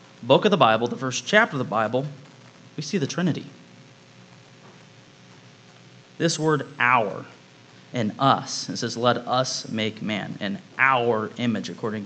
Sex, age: male, 30-49